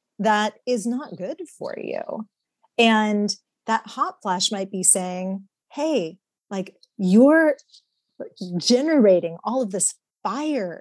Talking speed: 115 wpm